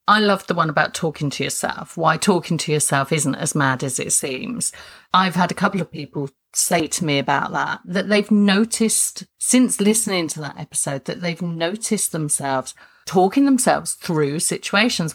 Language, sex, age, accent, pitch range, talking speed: English, female, 50-69, British, 150-205 Hz, 180 wpm